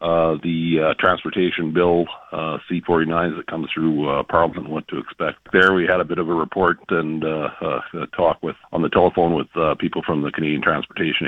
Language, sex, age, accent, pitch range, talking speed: English, male, 50-69, American, 80-90 Hz, 205 wpm